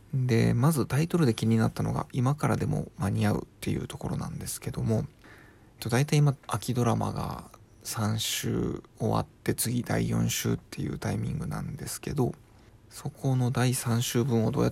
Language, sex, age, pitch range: Japanese, male, 20-39, 105-125 Hz